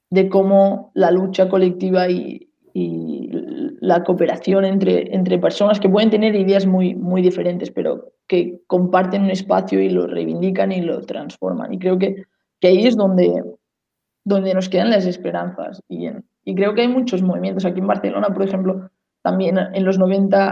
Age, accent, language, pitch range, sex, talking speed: 20-39, Spanish, English, 180-195 Hz, female, 175 wpm